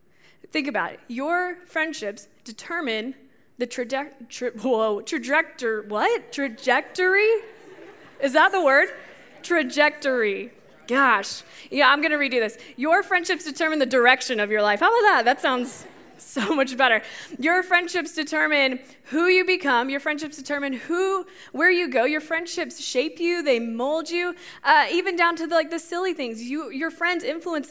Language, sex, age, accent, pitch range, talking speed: English, female, 20-39, American, 245-330 Hz, 160 wpm